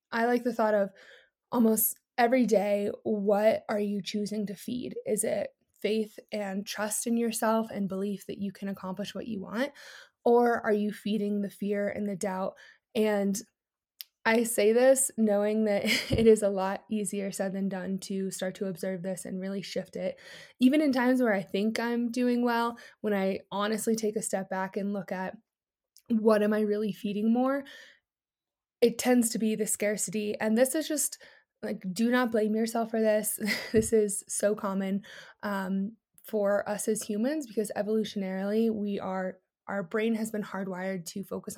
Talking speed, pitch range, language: 180 wpm, 200-225 Hz, English